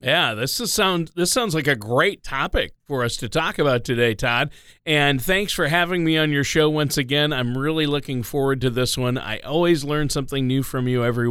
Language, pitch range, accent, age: English, 120-160 Hz, American, 40-59